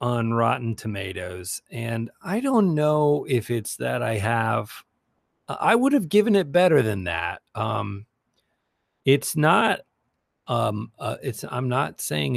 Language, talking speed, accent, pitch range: English, 140 wpm, American, 100-125 Hz